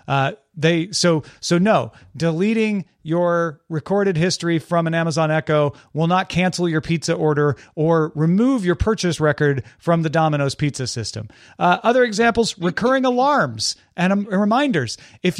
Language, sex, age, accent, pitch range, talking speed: English, male, 40-59, American, 160-225 Hz, 150 wpm